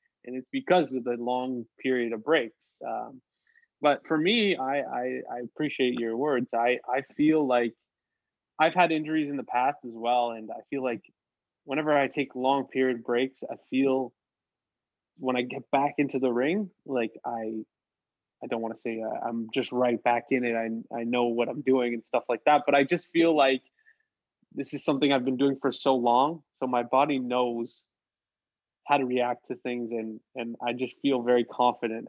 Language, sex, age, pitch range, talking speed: English, male, 20-39, 120-140 Hz, 195 wpm